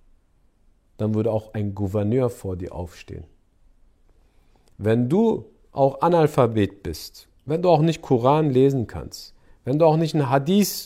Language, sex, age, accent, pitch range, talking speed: German, male, 50-69, German, 90-130 Hz, 145 wpm